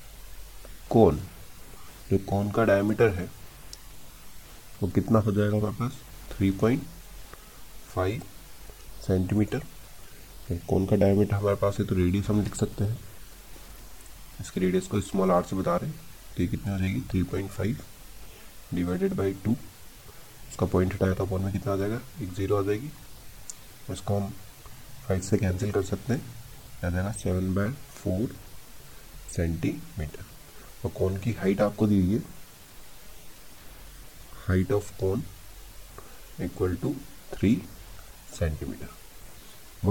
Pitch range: 95-110 Hz